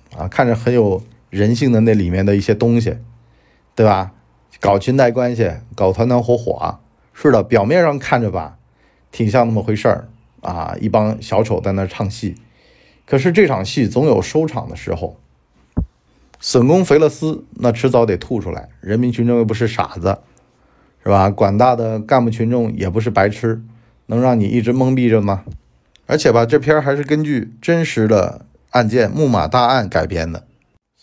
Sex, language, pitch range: male, Chinese, 95-120 Hz